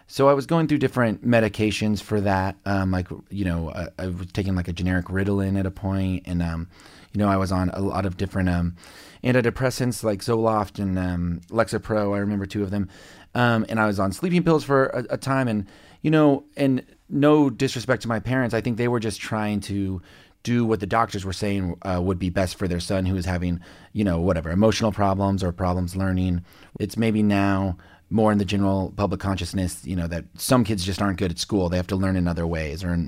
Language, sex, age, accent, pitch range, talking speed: English, male, 30-49, American, 95-115 Hz, 230 wpm